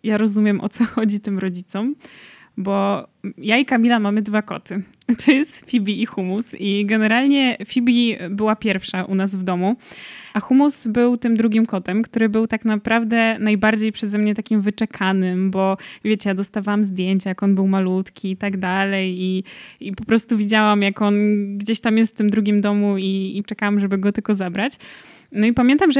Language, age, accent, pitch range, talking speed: Polish, 20-39, native, 210-245 Hz, 180 wpm